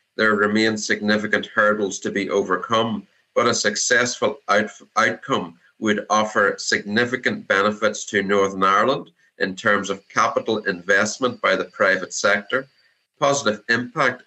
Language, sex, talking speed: English, male, 120 wpm